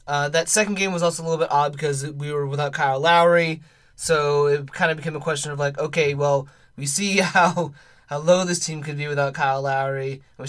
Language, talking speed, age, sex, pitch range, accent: English, 230 wpm, 20-39, male, 140-165 Hz, American